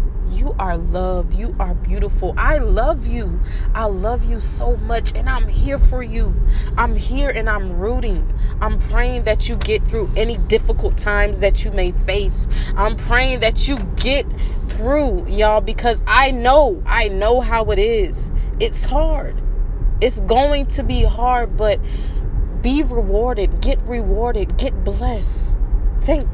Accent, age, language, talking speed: American, 20-39, English, 155 wpm